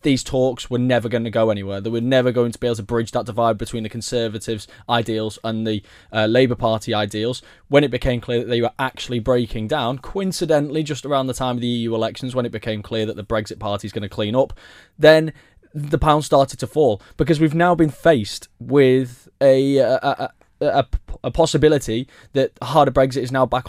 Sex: male